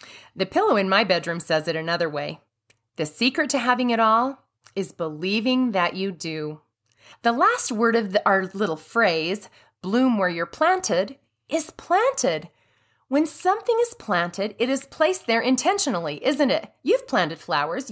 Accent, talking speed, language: American, 155 wpm, English